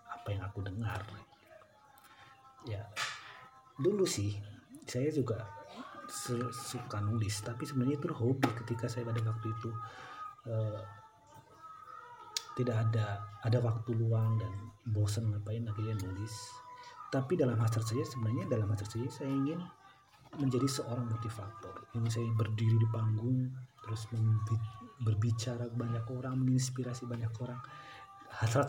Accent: native